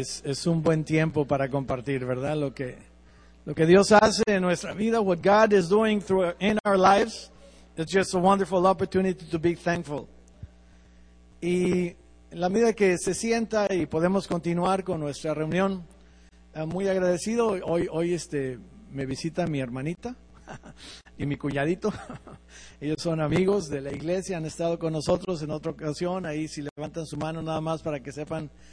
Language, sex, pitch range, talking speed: English, male, 145-190 Hz, 165 wpm